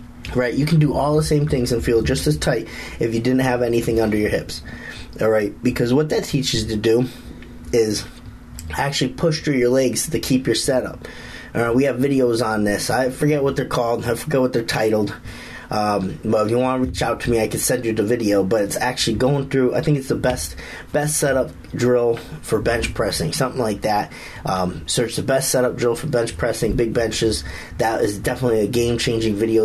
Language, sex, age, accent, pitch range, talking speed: English, male, 30-49, American, 110-125 Hz, 220 wpm